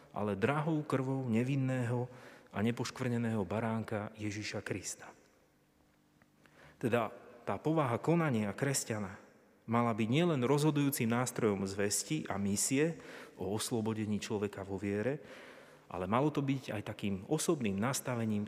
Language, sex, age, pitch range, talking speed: Slovak, male, 30-49, 110-140 Hz, 115 wpm